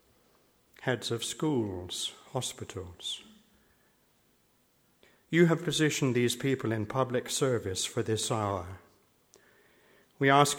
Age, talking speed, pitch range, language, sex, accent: 60-79, 95 wpm, 105-135 Hz, English, male, British